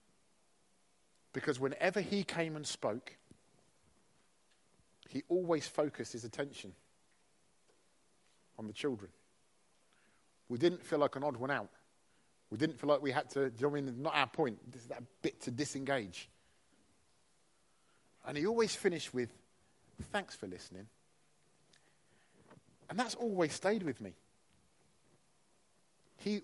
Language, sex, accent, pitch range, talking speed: English, male, British, 115-160 Hz, 125 wpm